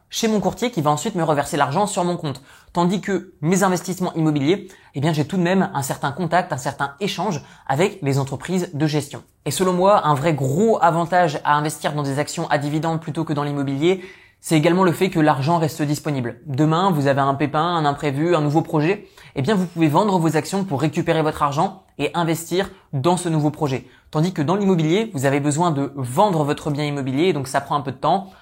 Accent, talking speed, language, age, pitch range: French, 225 wpm, French, 20-39, 145-185 Hz